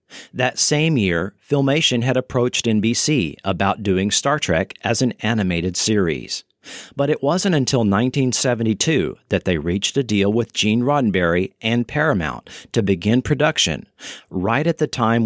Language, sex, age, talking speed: English, male, 40-59, 145 wpm